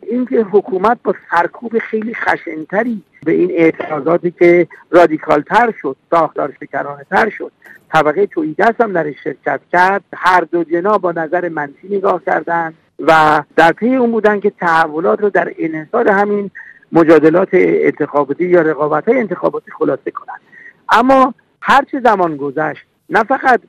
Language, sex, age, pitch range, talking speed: Persian, male, 50-69, 155-200 Hz, 140 wpm